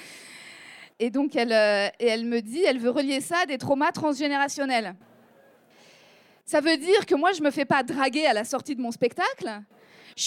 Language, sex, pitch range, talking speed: French, female, 275-390 Hz, 195 wpm